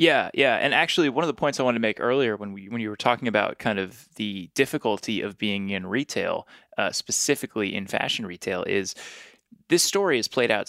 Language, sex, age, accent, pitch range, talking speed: English, male, 20-39, American, 100-125 Hz, 220 wpm